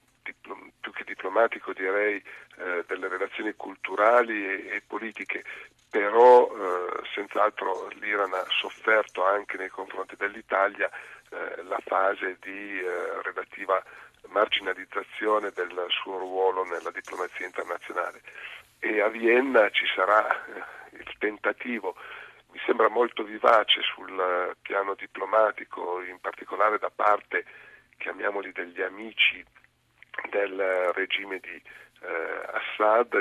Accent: native